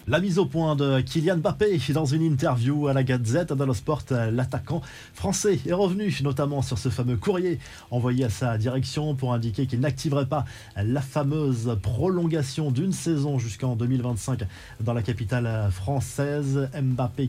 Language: French